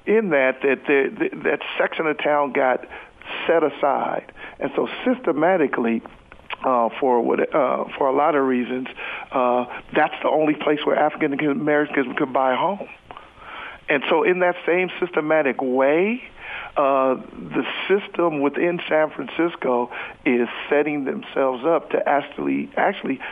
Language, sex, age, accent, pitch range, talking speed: English, male, 50-69, American, 125-155 Hz, 135 wpm